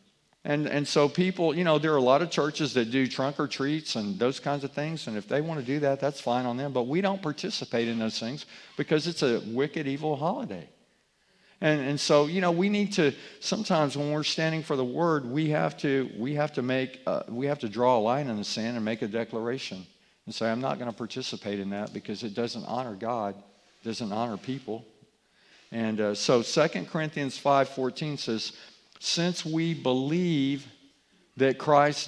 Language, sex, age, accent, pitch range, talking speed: English, male, 50-69, American, 120-155 Hz, 210 wpm